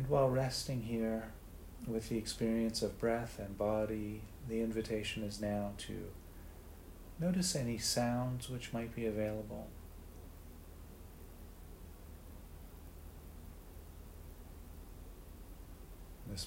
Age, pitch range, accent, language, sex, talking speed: 40-59, 85-110 Hz, American, English, male, 85 wpm